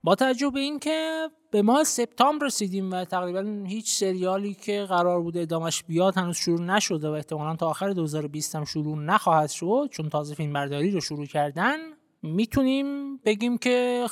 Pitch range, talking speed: 165-245 Hz, 165 wpm